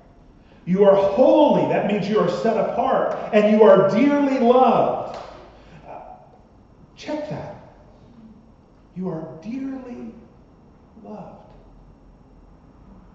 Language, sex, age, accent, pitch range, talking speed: English, male, 40-59, American, 140-215 Hz, 90 wpm